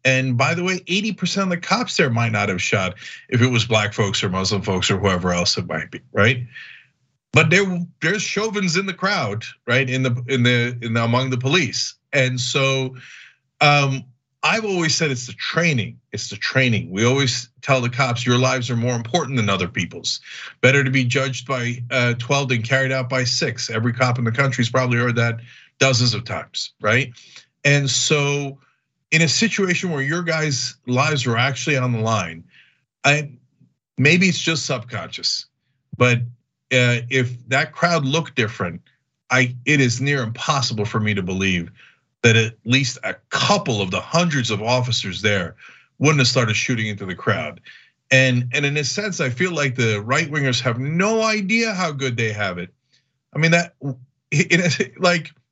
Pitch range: 120-150 Hz